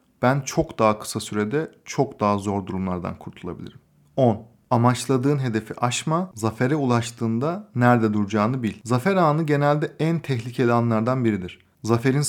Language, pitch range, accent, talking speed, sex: Turkish, 115-150 Hz, native, 130 wpm, male